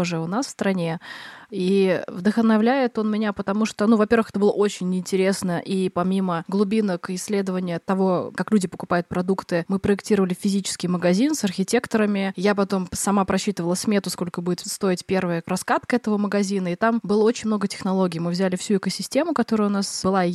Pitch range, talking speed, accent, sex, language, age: 185-220 Hz, 170 wpm, native, female, Russian, 20-39